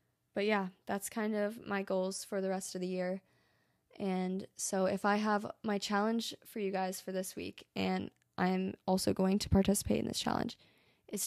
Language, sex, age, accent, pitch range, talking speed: English, female, 20-39, American, 185-210 Hz, 190 wpm